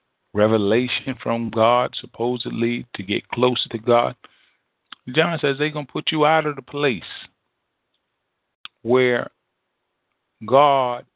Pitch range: 110-150 Hz